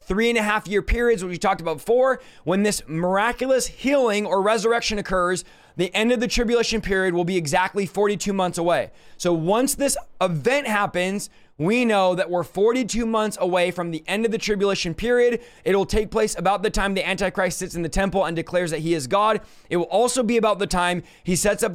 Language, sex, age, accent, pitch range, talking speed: English, male, 20-39, American, 180-225 Hz, 210 wpm